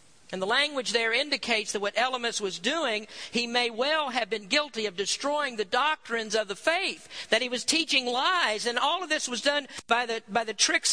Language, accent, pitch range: English, American, 205-270 Hz